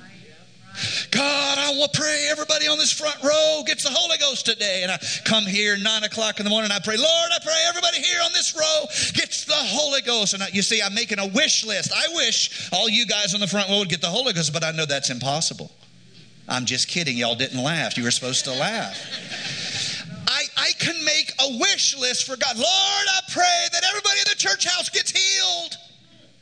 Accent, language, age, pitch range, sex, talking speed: American, English, 40-59, 195-310 Hz, male, 220 wpm